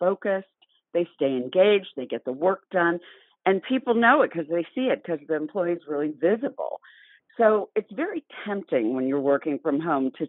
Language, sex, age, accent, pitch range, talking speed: English, female, 50-69, American, 145-205 Hz, 190 wpm